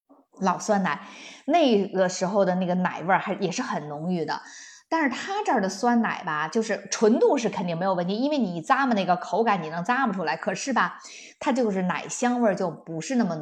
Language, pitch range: Chinese, 180-240 Hz